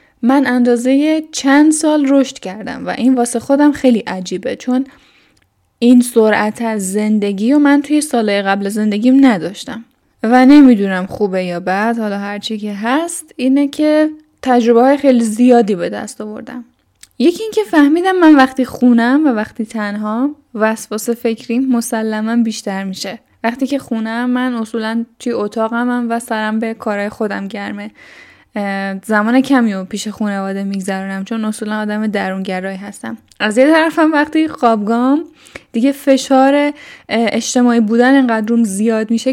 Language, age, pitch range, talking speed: Persian, 10-29, 215-260 Hz, 140 wpm